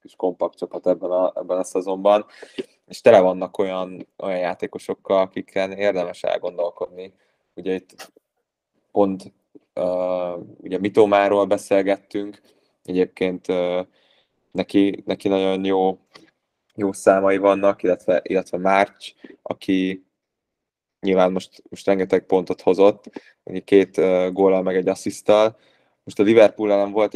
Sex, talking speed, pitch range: male, 115 wpm, 95-100 Hz